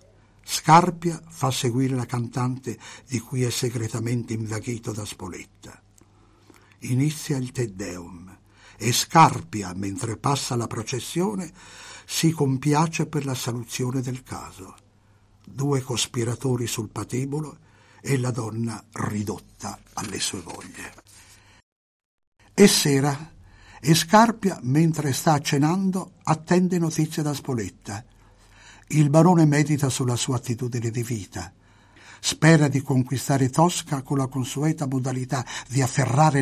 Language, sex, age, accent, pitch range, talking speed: Italian, male, 60-79, native, 110-150 Hz, 110 wpm